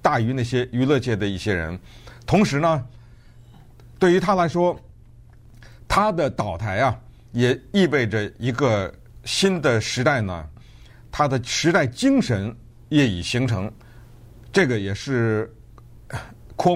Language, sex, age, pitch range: Chinese, male, 50-69, 115-150 Hz